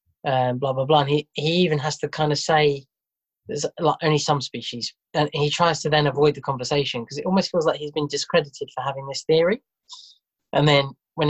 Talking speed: 225 wpm